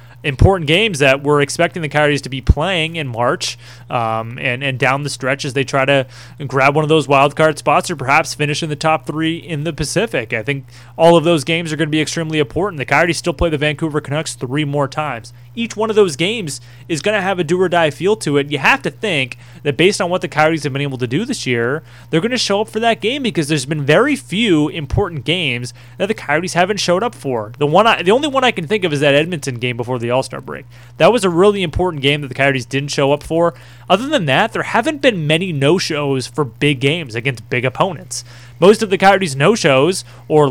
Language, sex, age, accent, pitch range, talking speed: English, male, 20-39, American, 135-175 Hz, 245 wpm